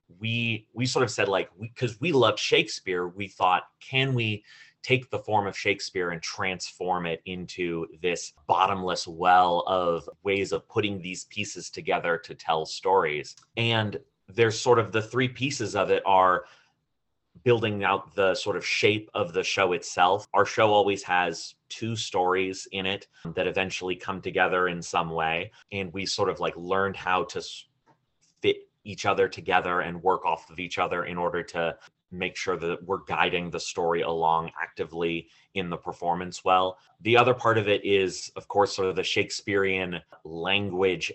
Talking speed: 170 wpm